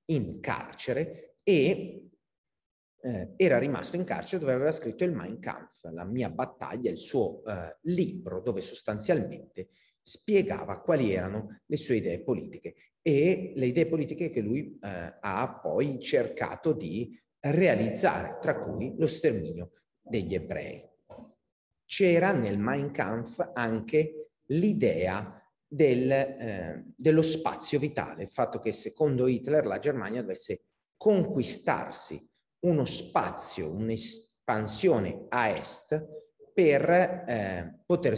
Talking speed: 120 wpm